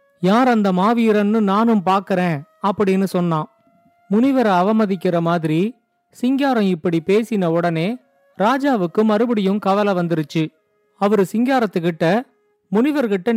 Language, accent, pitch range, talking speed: Tamil, native, 185-235 Hz, 95 wpm